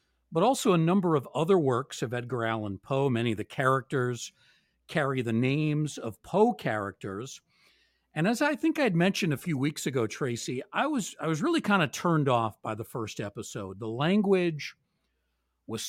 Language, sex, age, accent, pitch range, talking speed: English, male, 50-69, American, 120-170 Hz, 180 wpm